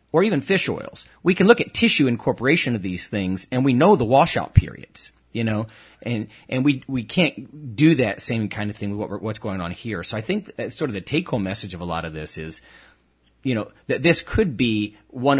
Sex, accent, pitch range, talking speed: male, American, 105-145 Hz, 240 wpm